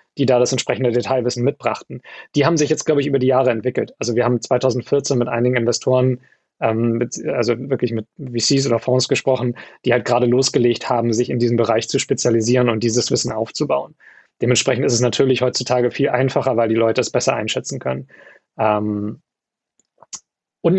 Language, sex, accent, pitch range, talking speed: German, male, German, 125-160 Hz, 180 wpm